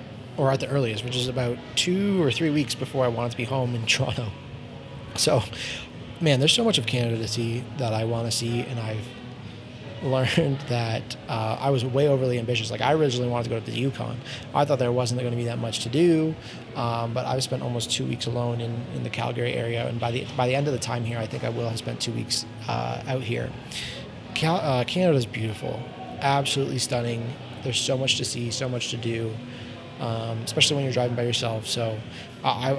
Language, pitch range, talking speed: English, 115-135 Hz, 220 wpm